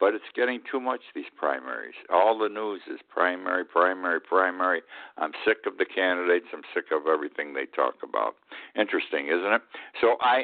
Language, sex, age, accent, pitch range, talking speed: English, male, 60-79, American, 90-125 Hz, 180 wpm